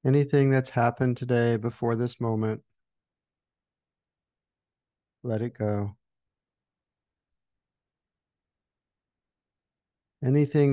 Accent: American